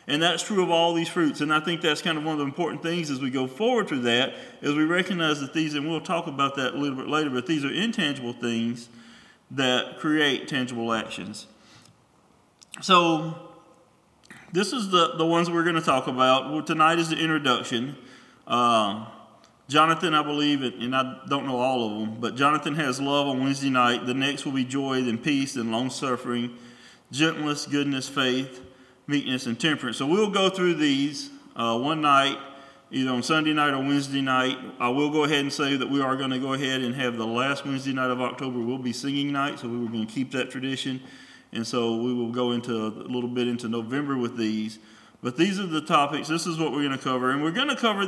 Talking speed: 215 wpm